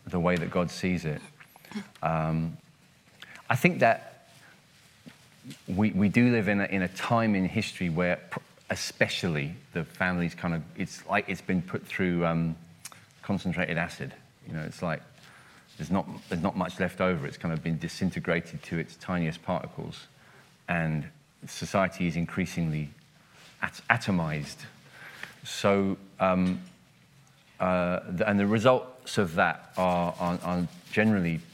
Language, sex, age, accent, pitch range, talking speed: English, male, 30-49, British, 85-100 Hz, 145 wpm